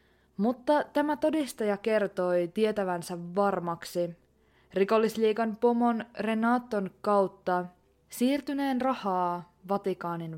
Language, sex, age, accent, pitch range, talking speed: Finnish, female, 20-39, native, 180-235 Hz, 75 wpm